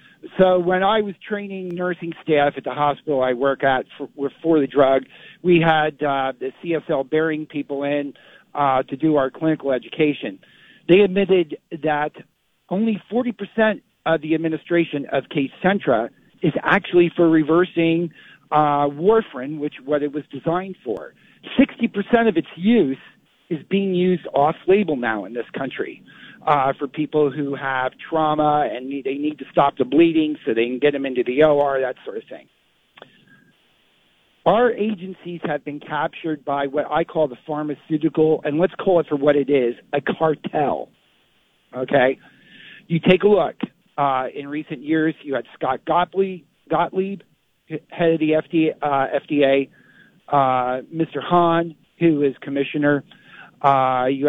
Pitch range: 140-175 Hz